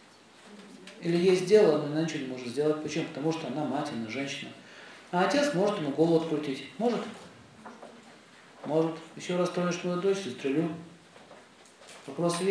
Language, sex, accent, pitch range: Russian, male, native, 140-190 Hz